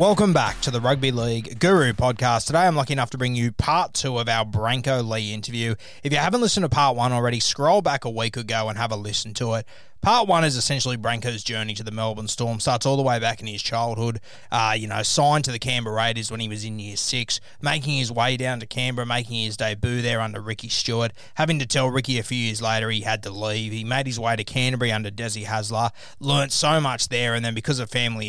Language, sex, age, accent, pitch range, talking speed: English, male, 20-39, Australian, 110-130 Hz, 245 wpm